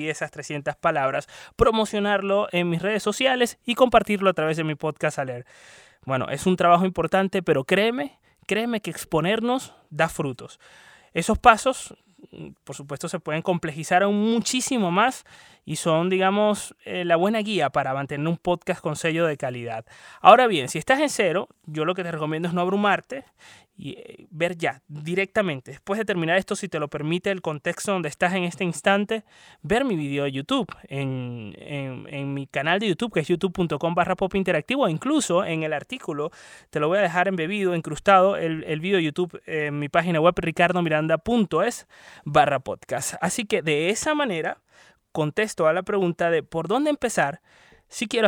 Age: 20-39